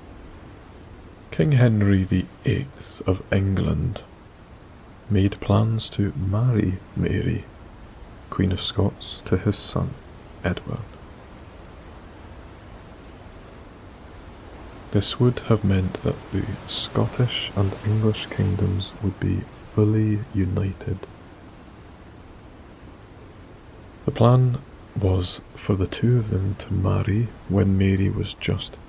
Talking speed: 95 wpm